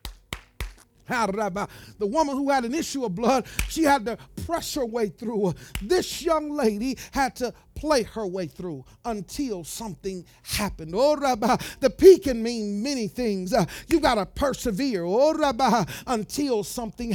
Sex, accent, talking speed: male, American, 160 wpm